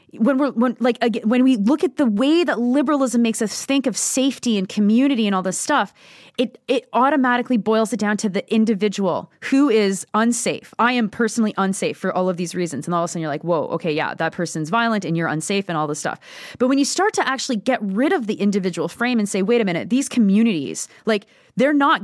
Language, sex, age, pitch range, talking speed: English, female, 20-39, 195-255 Hz, 230 wpm